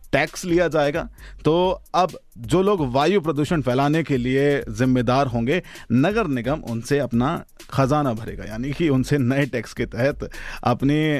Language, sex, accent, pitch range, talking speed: Hindi, male, native, 125-160 Hz, 150 wpm